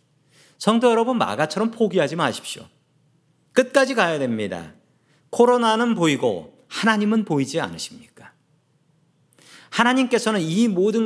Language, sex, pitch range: Korean, male, 140-200 Hz